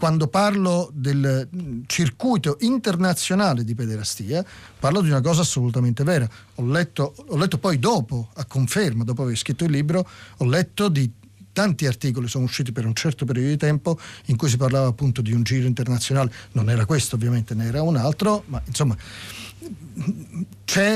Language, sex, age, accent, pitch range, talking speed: Italian, male, 40-59, native, 120-165 Hz, 170 wpm